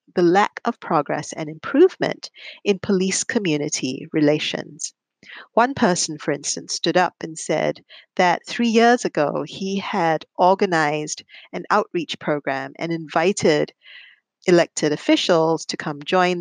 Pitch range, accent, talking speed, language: 160-215 Hz, American, 130 wpm, English